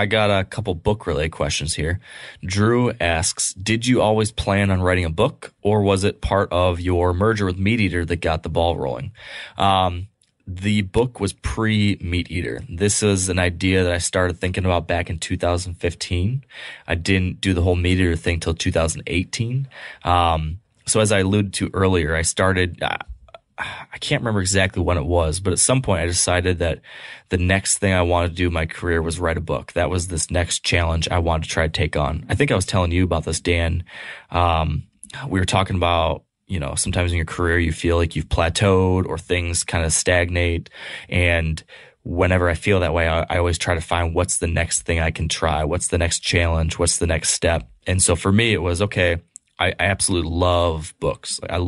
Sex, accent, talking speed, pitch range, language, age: male, American, 210 wpm, 85-95 Hz, English, 20-39